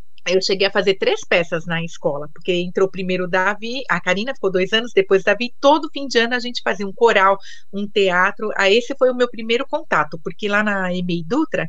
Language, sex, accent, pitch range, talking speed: Portuguese, female, Brazilian, 185-240 Hz, 225 wpm